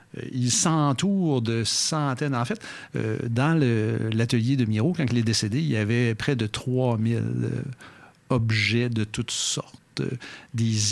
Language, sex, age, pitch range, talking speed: French, male, 60-79, 110-135 Hz, 135 wpm